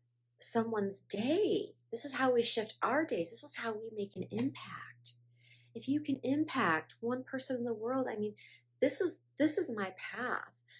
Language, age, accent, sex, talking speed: English, 30-49, American, female, 185 wpm